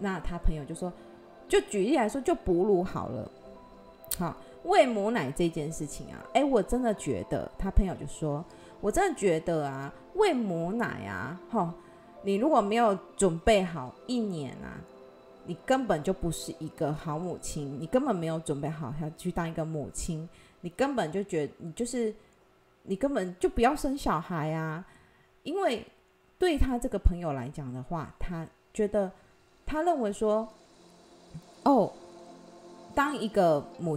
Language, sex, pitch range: Chinese, female, 155-215 Hz